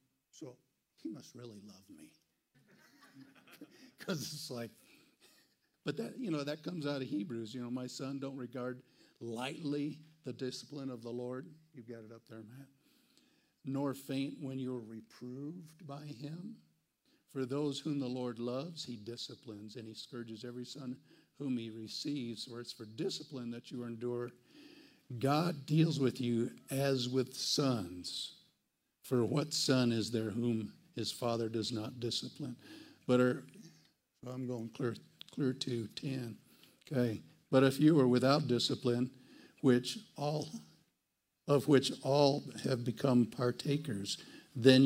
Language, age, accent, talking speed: English, 50-69, American, 145 wpm